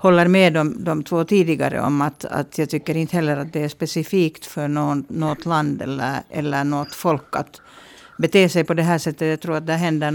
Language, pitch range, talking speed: Swedish, 145-170 Hz, 215 wpm